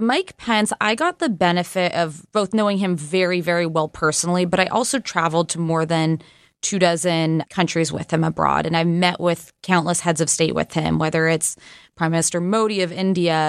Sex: female